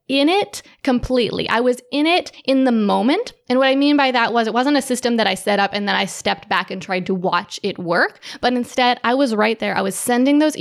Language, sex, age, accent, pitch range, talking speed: English, female, 20-39, American, 215-270 Hz, 260 wpm